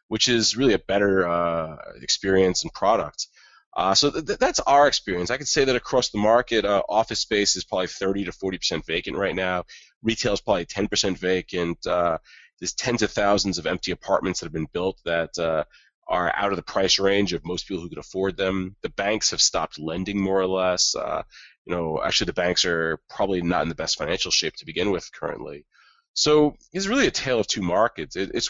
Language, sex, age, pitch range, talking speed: English, male, 30-49, 90-115 Hz, 215 wpm